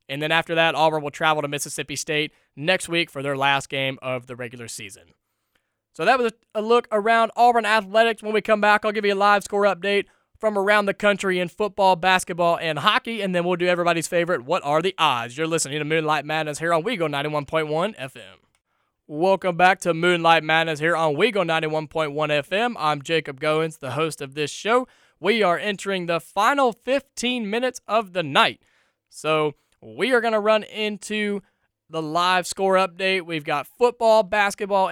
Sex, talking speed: male, 190 wpm